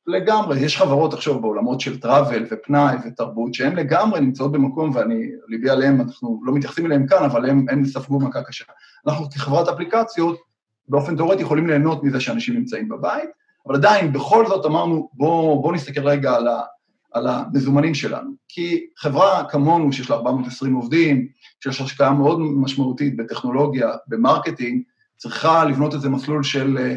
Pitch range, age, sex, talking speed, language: 135-170 Hz, 30-49, male, 155 wpm, Hebrew